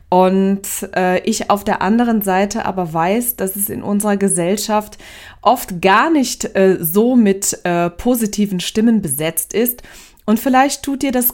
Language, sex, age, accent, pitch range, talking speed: German, female, 20-39, German, 170-210 Hz, 160 wpm